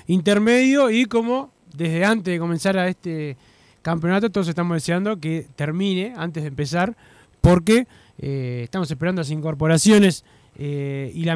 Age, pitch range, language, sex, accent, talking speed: 20-39, 135-175 Hz, Spanish, male, Argentinian, 145 wpm